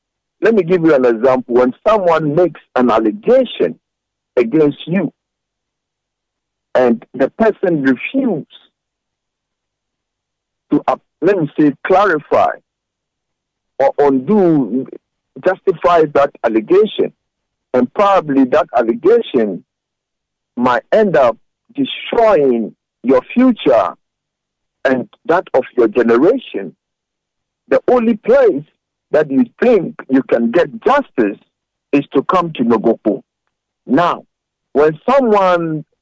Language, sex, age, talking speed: English, male, 50-69, 100 wpm